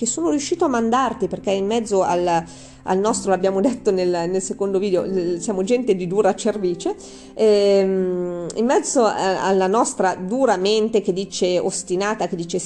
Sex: female